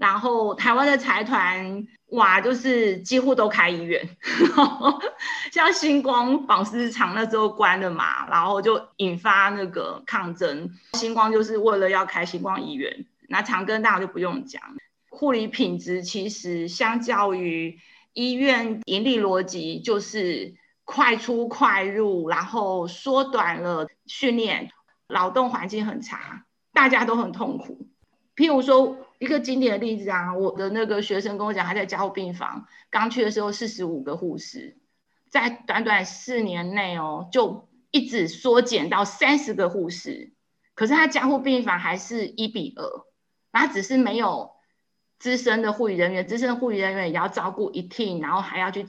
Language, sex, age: Chinese, female, 30-49